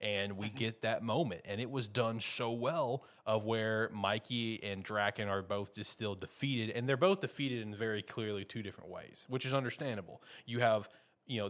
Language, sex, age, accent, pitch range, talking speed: English, male, 20-39, American, 105-130 Hz, 200 wpm